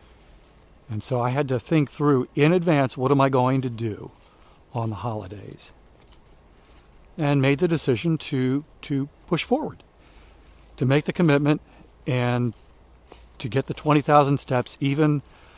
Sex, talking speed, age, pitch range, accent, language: male, 145 wpm, 60-79, 110-150 Hz, American, English